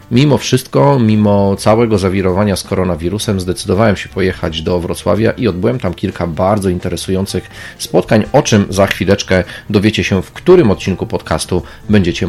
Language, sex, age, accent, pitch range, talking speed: Polish, male, 40-59, native, 90-110 Hz, 145 wpm